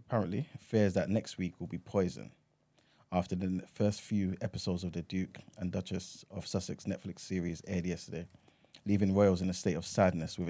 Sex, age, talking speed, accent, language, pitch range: male, 20-39, 185 wpm, British, English, 90-100 Hz